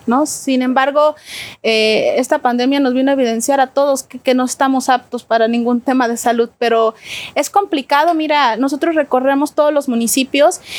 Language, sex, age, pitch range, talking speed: Spanish, female, 30-49, 255-295 Hz, 165 wpm